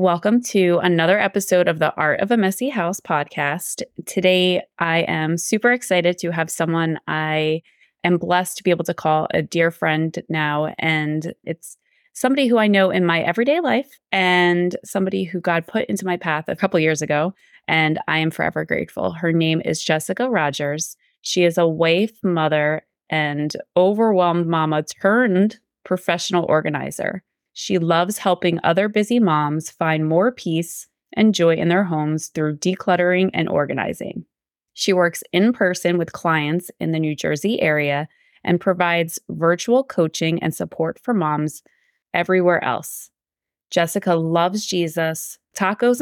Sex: female